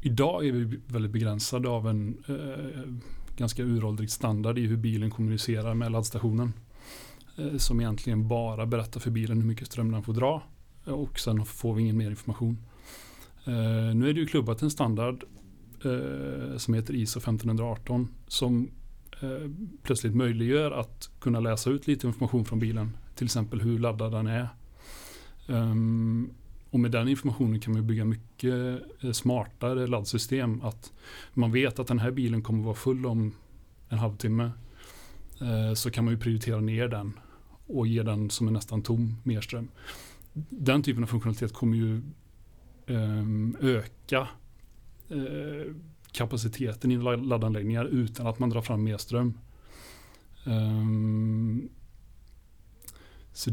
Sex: male